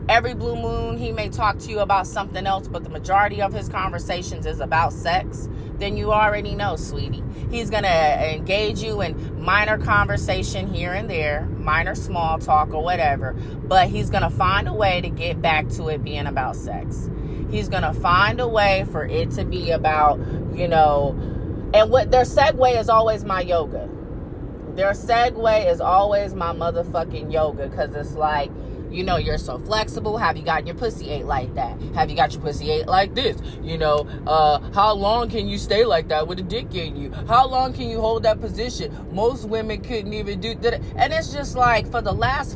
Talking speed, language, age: 200 wpm, English, 20-39